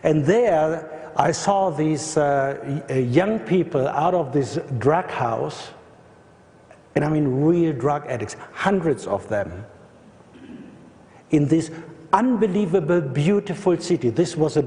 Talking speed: 125 wpm